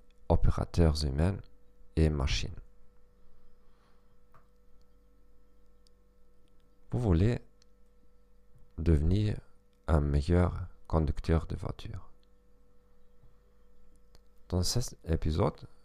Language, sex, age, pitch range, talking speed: Bulgarian, male, 40-59, 80-100 Hz, 55 wpm